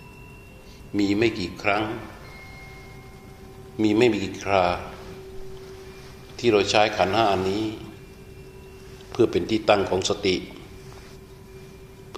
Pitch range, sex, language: 95-120 Hz, male, Thai